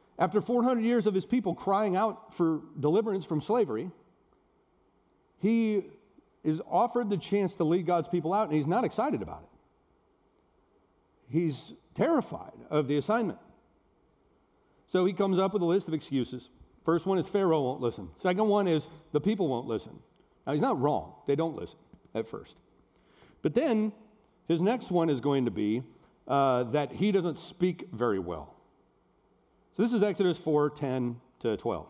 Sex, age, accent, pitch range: male, 40-59, American, 150-205 Hz